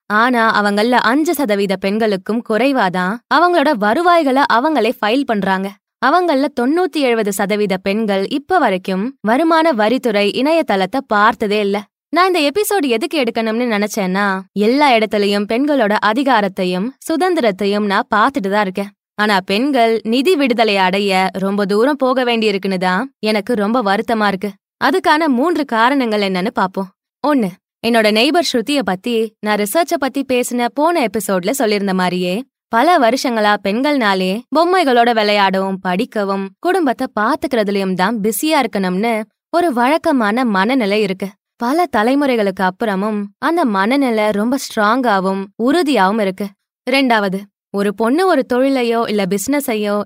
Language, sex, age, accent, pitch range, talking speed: Tamil, female, 20-39, native, 200-270 Hz, 90 wpm